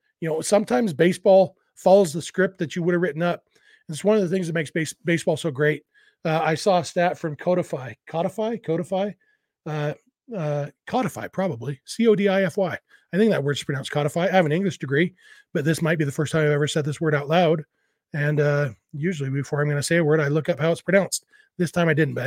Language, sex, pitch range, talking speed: English, male, 155-195 Hz, 240 wpm